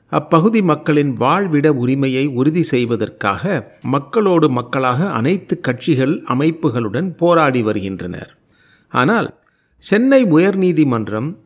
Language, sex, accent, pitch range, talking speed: Tamil, male, native, 125-165 Hz, 85 wpm